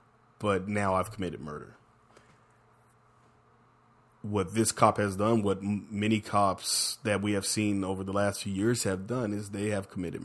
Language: English